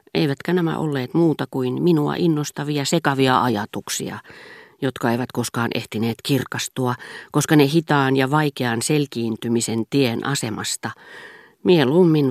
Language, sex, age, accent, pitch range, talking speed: Finnish, female, 40-59, native, 125-165 Hz, 110 wpm